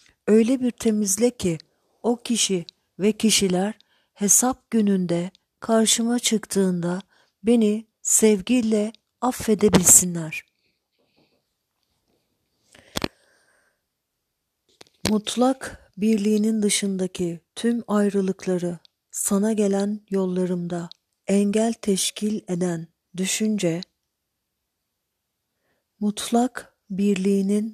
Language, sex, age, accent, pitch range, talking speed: Turkish, female, 50-69, native, 180-215 Hz, 65 wpm